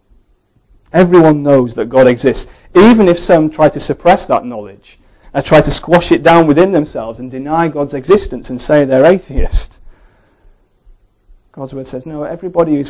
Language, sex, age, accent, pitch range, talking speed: English, male, 30-49, British, 105-145 Hz, 165 wpm